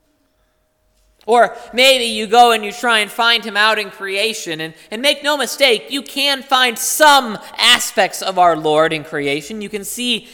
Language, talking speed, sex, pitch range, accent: English, 180 wpm, male, 145-230 Hz, American